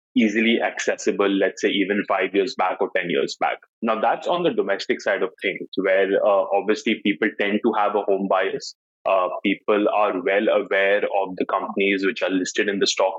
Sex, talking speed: male, 200 wpm